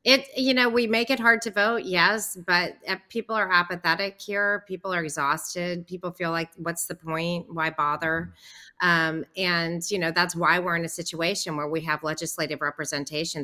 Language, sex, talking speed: English, female, 190 wpm